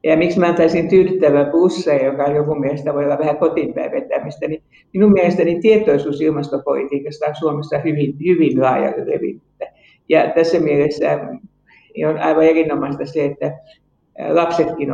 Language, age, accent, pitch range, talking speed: Finnish, 60-79, native, 145-175 Hz, 135 wpm